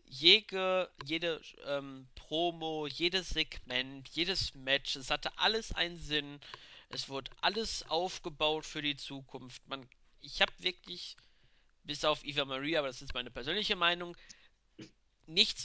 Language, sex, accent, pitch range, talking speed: German, male, German, 135-170 Hz, 135 wpm